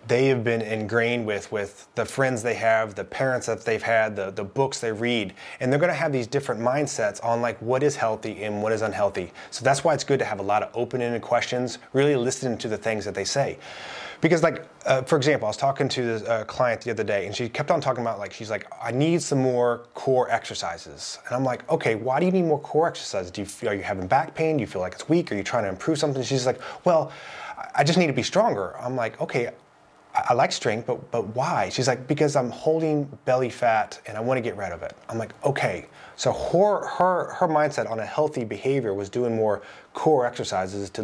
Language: English